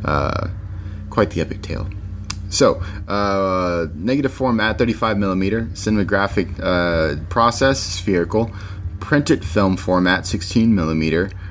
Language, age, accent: English, 30-49, American